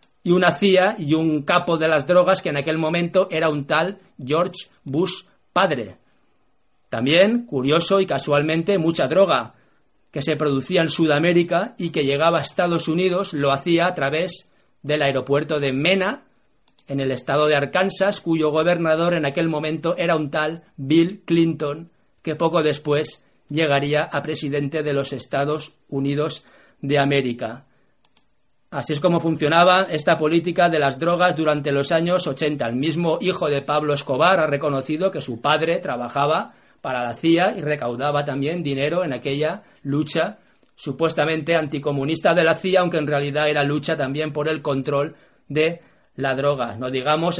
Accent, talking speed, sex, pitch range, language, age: Spanish, 160 wpm, male, 145-170 Hz, Spanish, 40-59